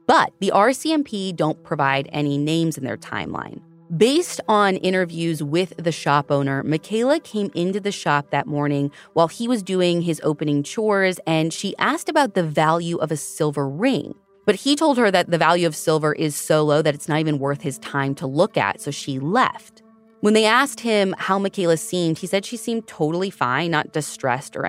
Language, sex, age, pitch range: English, female, 30-49, 145-200 Hz